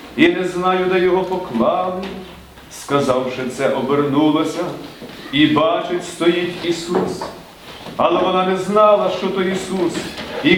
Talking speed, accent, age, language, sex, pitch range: 120 wpm, native, 40-59, Ukrainian, male, 155-190 Hz